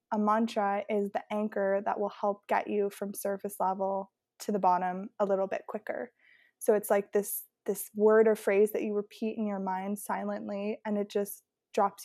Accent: American